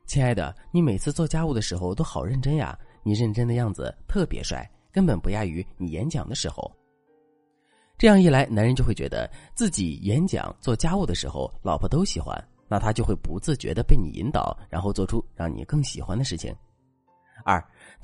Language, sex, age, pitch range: Chinese, male, 30-49, 95-140 Hz